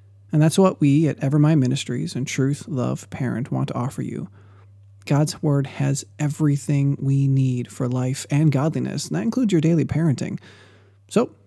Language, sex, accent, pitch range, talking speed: English, male, American, 115-145 Hz, 165 wpm